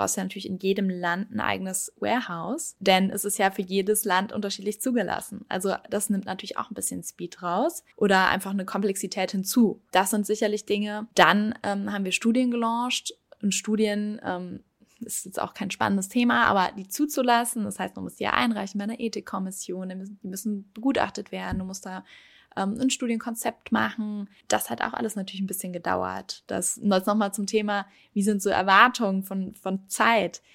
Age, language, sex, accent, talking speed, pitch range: 10-29, German, female, German, 190 wpm, 190-220 Hz